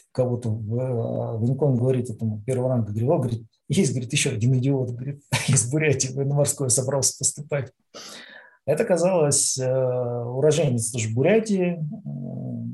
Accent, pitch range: native, 120-150 Hz